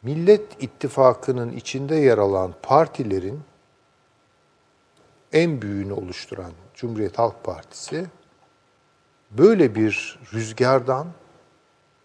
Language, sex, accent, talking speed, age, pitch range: Turkish, male, native, 75 wpm, 50-69, 115-155 Hz